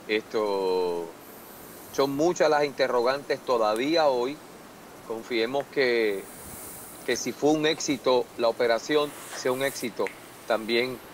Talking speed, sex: 110 wpm, male